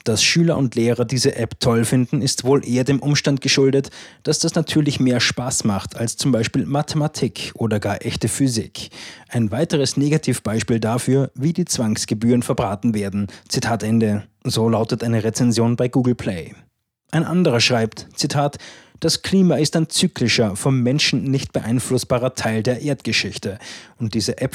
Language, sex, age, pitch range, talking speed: German, male, 20-39, 110-140 Hz, 160 wpm